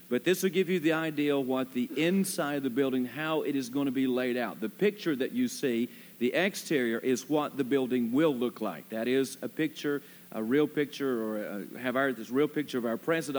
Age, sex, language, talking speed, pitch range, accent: 50-69, male, English, 230 wpm, 120-150 Hz, American